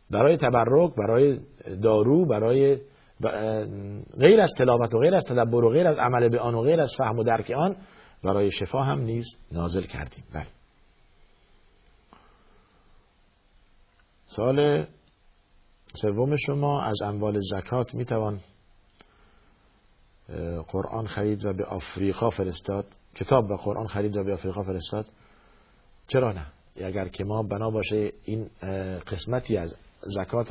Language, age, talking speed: Persian, 50-69, 130 wpm